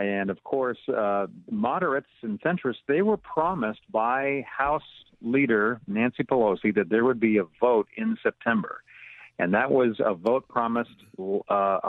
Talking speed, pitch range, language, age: 150 wpm, 110-135 Hz, English, 50-69